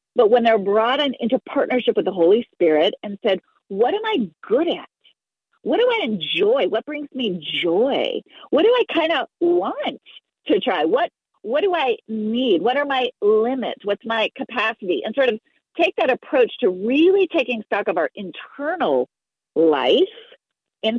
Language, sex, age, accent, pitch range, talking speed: English, female, 40-59, American, 200-325 Hz, 170 wpm